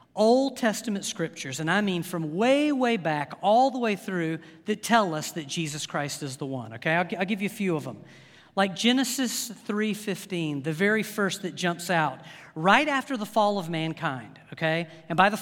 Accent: American